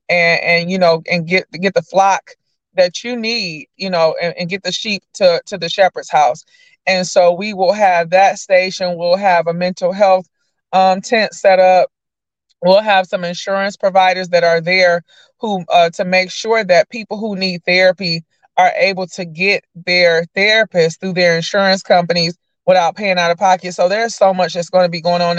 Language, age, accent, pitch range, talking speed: English, 20-39, American, 170-195 Hz, 195 wpm